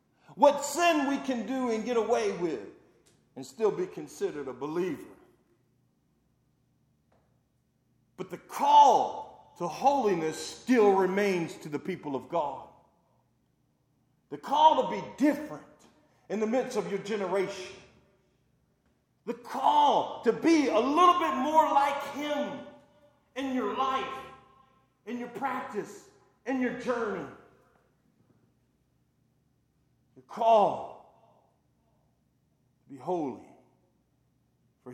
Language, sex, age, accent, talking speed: English, male, 40-59, American, 105 wpm